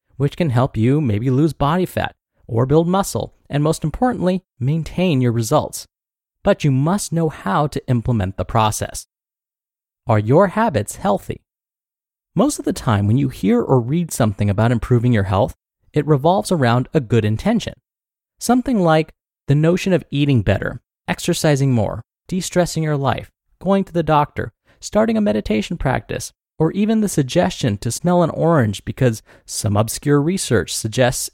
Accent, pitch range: American, 115-175 Hz